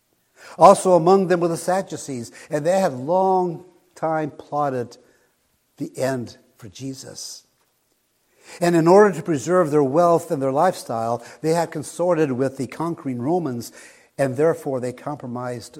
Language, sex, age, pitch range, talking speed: English, male, 60-79, 125-170 Hz, 140 wpm